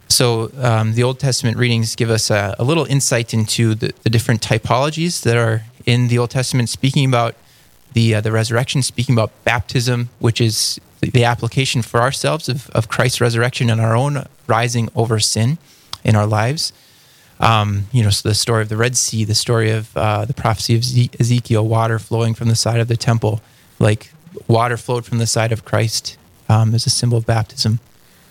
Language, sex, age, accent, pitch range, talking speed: English, male, 20-39, American, 115-125 Hz, 195 wpm